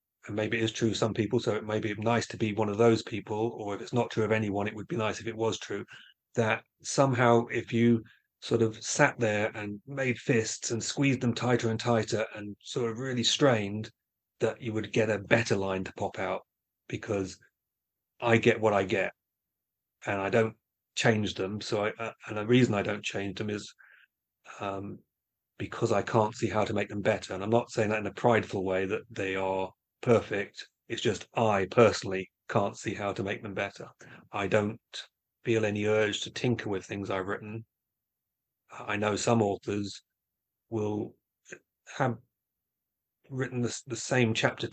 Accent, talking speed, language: British, 190 wpm, English